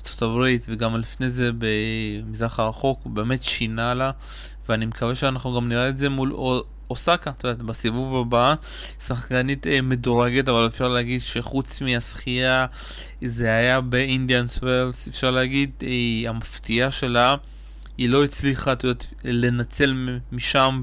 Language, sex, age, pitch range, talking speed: Hebrew, male, 20-39, 120-140 Hz, 120 wpm